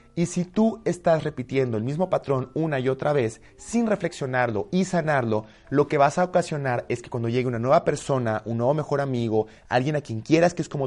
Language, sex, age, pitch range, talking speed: Spanish, male, 30-49, 120-165 Hz, 215 wpm